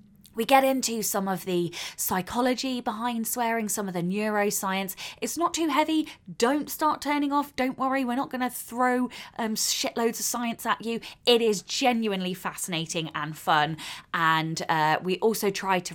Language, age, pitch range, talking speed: English, 20-39, 165-240 Hz, 175 wpm